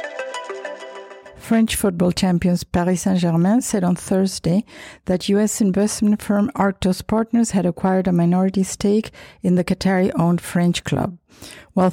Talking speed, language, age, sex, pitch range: 125 wpm, English, 50-69, female, 180-210 Hz